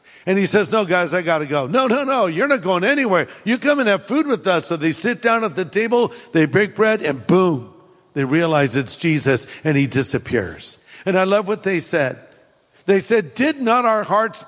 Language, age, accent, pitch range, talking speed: English, 60-79, American, 170-215 Hz, 220 wpm